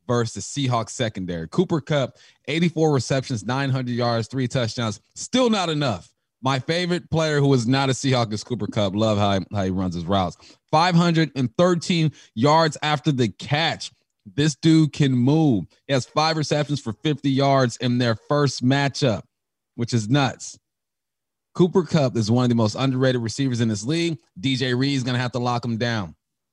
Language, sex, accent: English, male, American